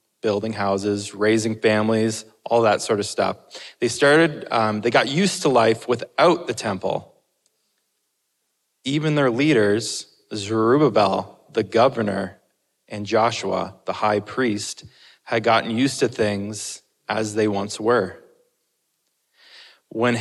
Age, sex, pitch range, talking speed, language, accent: 20-39, male, 105-135 Hz, 120 wpm, English, American